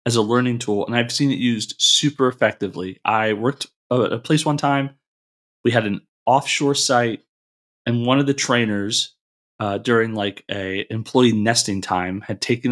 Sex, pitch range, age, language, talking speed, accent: male, 110-135 Hz, 30-49, English, 175 wpm, American